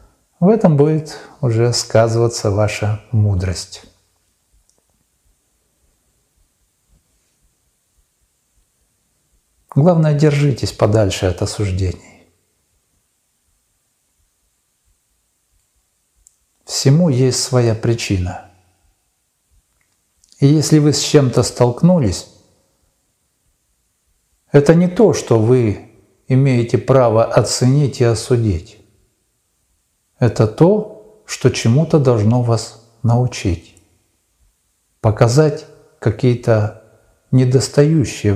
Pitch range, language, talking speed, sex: 95-130 Hz, Russian, 65 wpm, male